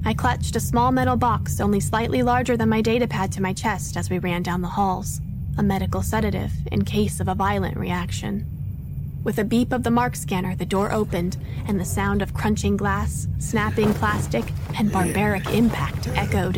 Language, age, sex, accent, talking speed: English, 20-39, female, American, 190 wpm